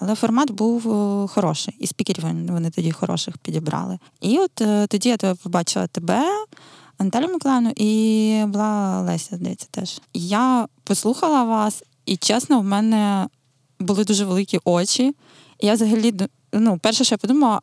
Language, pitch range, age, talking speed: Ukrainian, 185-225 Hz, 20-39, 150 wpm